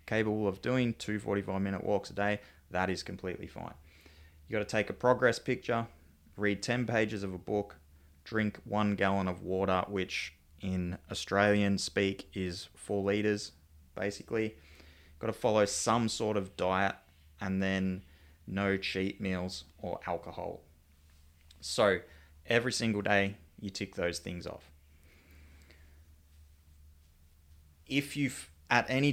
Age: 20-39